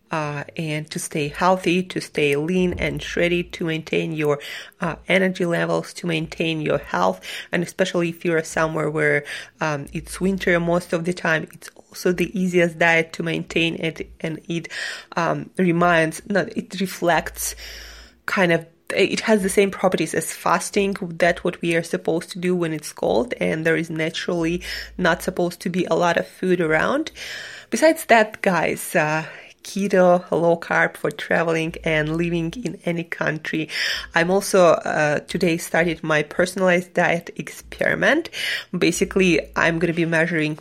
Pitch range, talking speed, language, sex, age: 160-185 Hz, 165 wpm, English, female, 20-39